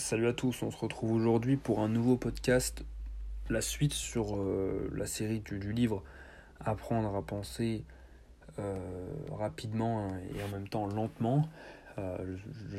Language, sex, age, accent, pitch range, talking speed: French, male, 30-49, French, 100-135 Hz, 150 wpm